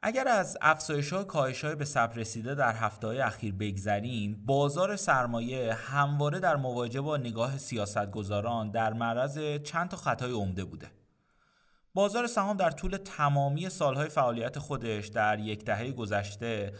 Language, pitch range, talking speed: Persian, 115-160 Hz, 145 wpm